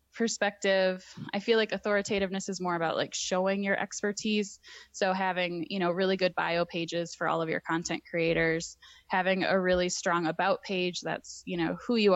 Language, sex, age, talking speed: English, female, 10-29, 185 wpm